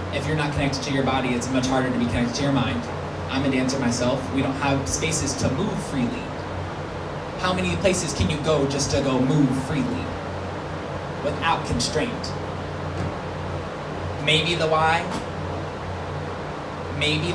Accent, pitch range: American, 100-155 Hz